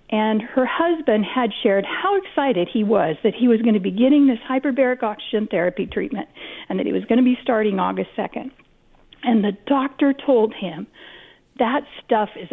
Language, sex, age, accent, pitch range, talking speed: English, female, 50-69, American, 210-255 Hz, 185 wpm